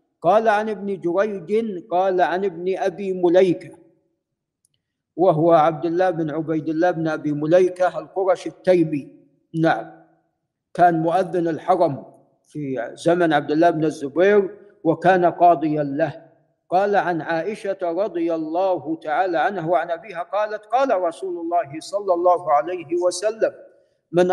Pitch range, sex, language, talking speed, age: 165-205 Hz, male, Arabic, 125 wpm, 50-69